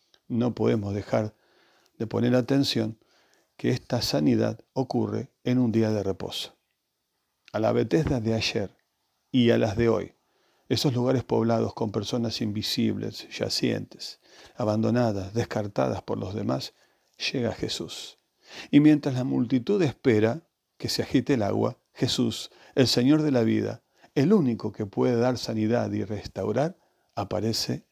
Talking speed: 140 wpm